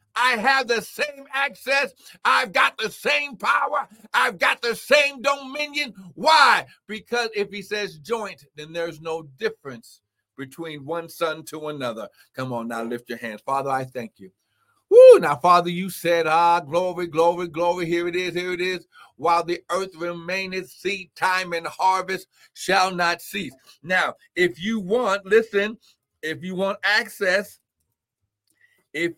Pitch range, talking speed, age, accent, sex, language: 160-215 Hz, 155 wpm, 60-79, American, male, English